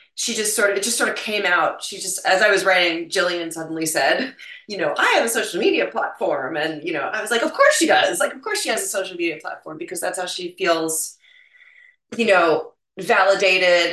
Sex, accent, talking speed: female, American, 235 wpm